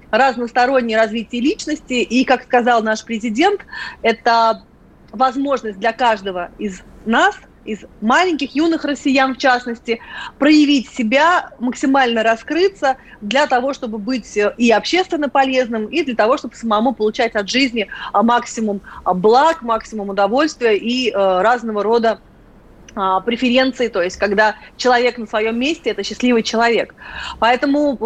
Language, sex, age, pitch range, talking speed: Russian, female, 30-49, 215-265 Hz, 125 wpm